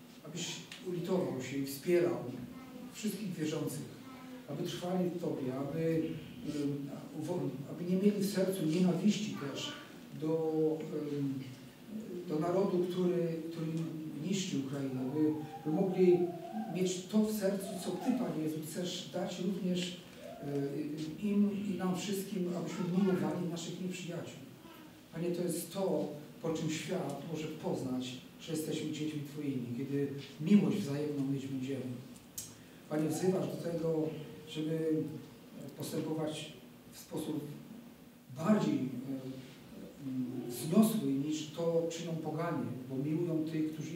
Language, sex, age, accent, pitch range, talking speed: Polish, male, 50-69, native, 150-185 Hz, 120 wpm